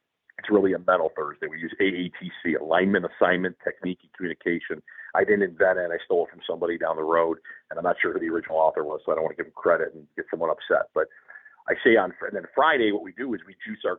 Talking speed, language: 255 wpm, English